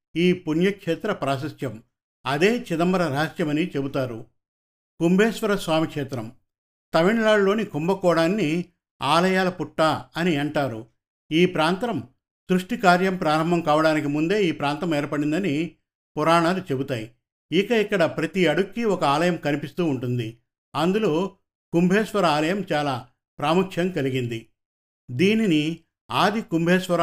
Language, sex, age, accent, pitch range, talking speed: Telugu, male, 50-69, native, 140-185 Hz, 95 wpm